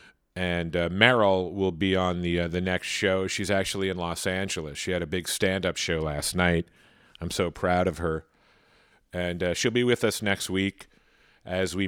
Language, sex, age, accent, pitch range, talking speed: English, male, 40-59, American, 85-105 Hz, 195 wpm